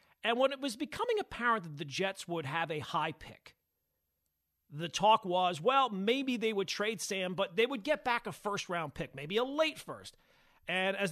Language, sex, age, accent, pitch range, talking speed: English, male, 40-59, American, 150-200 Hz, 200 wpm